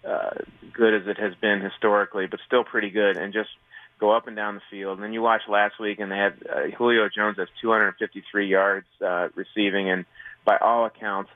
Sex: male